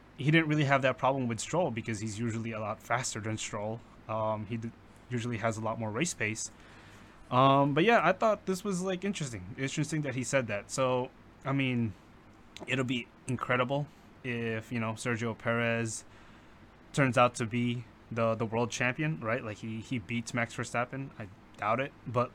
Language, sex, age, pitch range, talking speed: English, male, 20-39, 110-125 Hz, 190 wpm